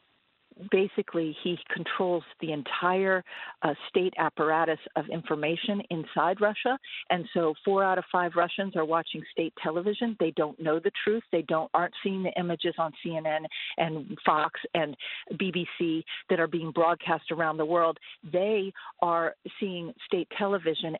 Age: 50-69